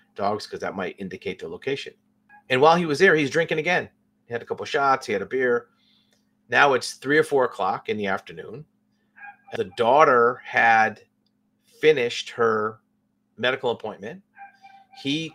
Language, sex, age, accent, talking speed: English, male, 40-59, American, 165 wpm